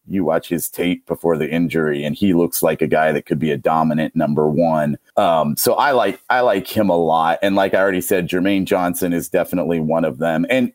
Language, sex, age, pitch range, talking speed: English, male, 40-59, 85-105 Hz, 235 wpm